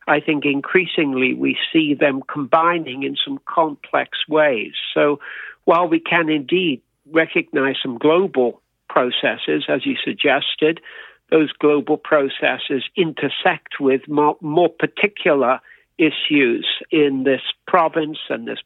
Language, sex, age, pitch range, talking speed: English, male, 60-79, 145-185 Hz, 120 wpm